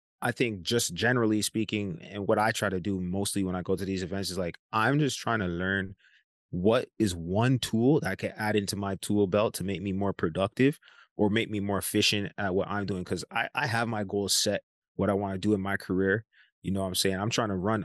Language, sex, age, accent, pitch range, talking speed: English, male, 20-39, American, 90-105 Hz, 250 wpm